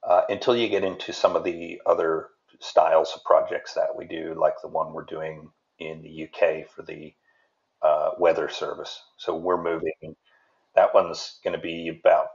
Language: English